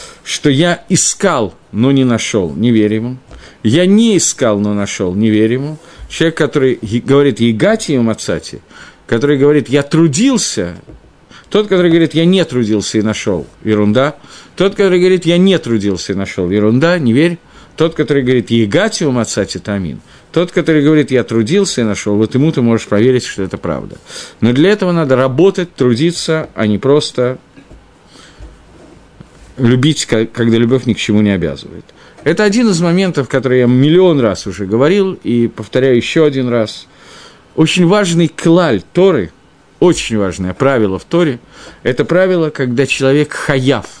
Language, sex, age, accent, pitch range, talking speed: Russian, male, 50-69, native, 115-165 Hz, 155 wpm